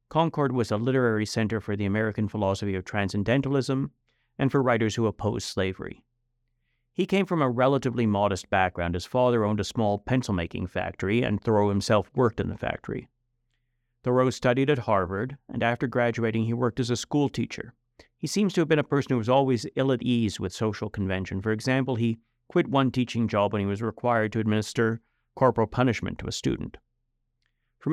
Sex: male